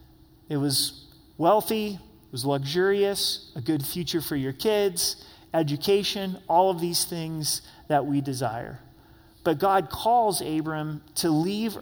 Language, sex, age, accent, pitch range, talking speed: English, male, 30-49, American, 145-190 Hz, 130 wpm